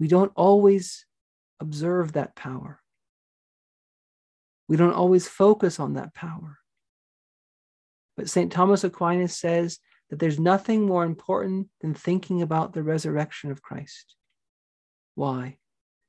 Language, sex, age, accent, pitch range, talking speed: English, male, 40-59, American, 155-180 Hz, 115 wpm